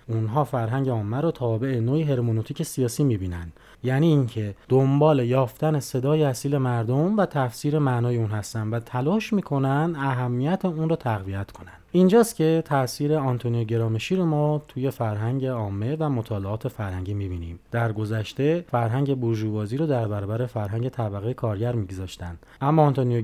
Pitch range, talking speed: 110-150 Hz, 145 wpm